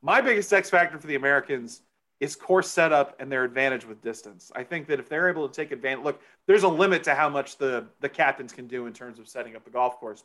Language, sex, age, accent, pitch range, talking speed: English, male, 30-49, American, 125-180 Hz, 260 wpm